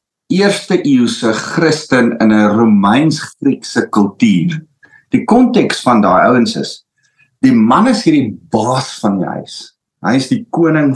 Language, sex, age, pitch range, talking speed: English, male, 50-69, 135-195 Hz, 150 wpm